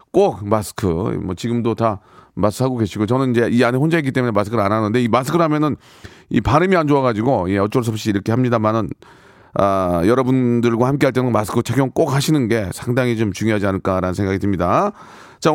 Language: Korean